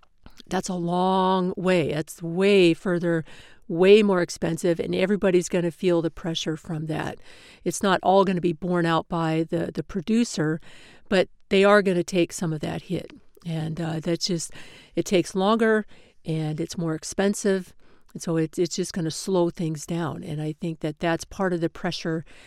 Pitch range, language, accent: 165-190 Hz, English, American